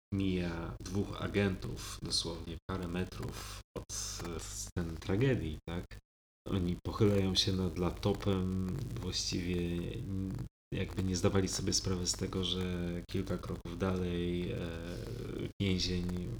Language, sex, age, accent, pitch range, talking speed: Polish, male, 30-49, native, 85-100 Hz, 100 wpm